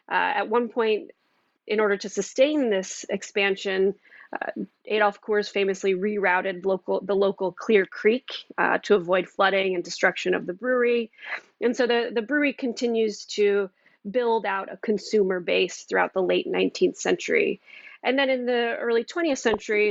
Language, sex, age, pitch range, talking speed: English, female, 30-49, 190-235 Hz, 160 wpm